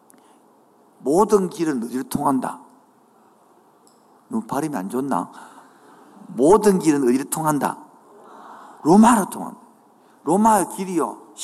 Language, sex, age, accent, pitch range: Korean, male, 50-69, native, 185-250 Hz